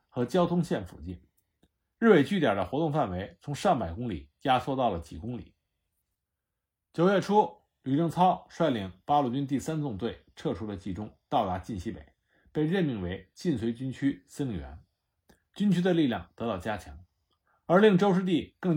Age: 50-69